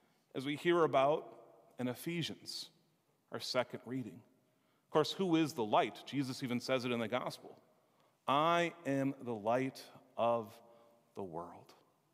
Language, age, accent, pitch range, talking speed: English, 40-59, American, 130-175 Hz, 145 wpm